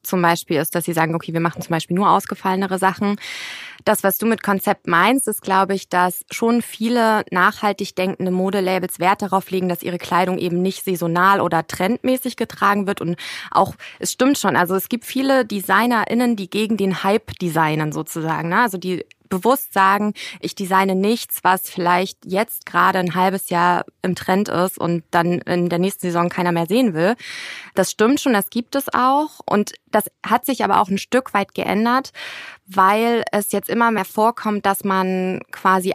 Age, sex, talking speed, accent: 20-39, female, 185 wpm, German